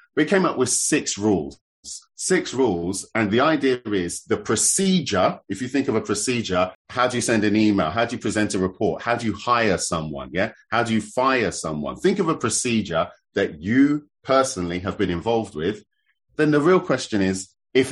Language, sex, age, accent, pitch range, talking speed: English, male, 30-49, British, 95-130 Hz, 200 wpm